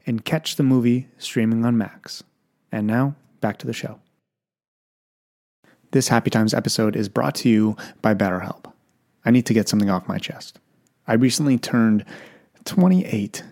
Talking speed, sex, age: 155 wpm, male, 30-49